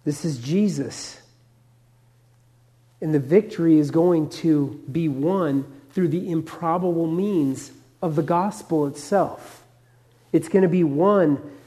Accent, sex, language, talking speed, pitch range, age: American, male, English, 125 wpm, 140-200 Hz, 40-59